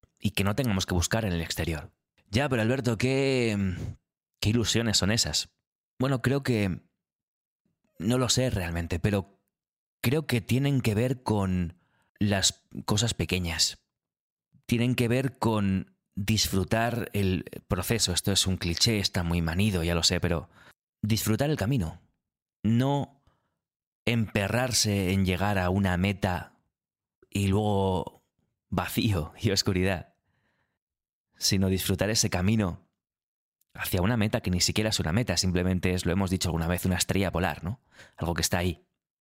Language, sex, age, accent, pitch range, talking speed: Spanish, male, 30-49, Spanish, 90-115 Hz, 145 wpm